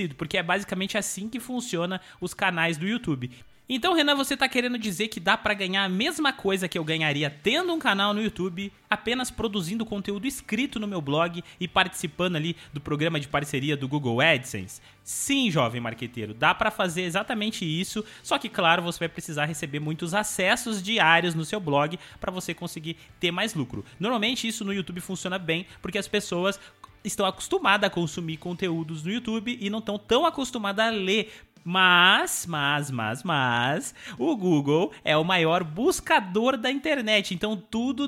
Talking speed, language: 175 wpm, Portuguese